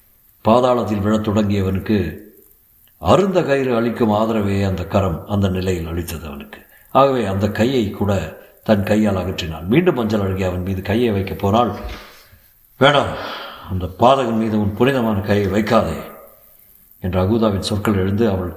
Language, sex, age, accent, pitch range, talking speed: Tamil, male, 60-79, native, 95-120 Hz, 125 wpm